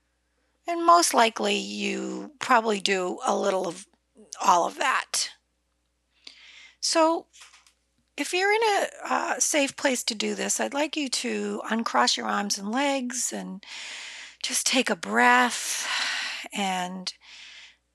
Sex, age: female, 50-69